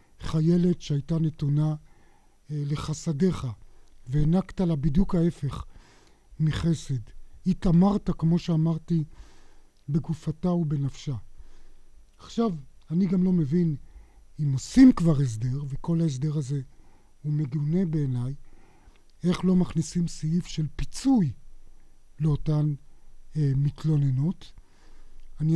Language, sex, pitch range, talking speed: Hebrew, male, 145-190 Hz, 90 wpm